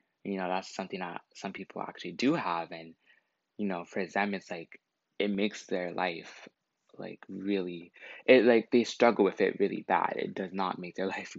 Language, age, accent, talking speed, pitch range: English, 20-39, American, 195 wpm, 95-115 Hz